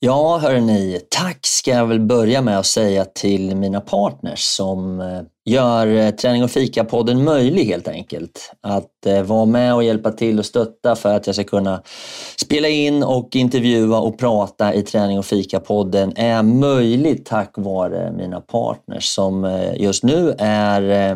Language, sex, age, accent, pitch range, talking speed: Swedish, male, 30-49, native, 100-120 Hz, 155 wpm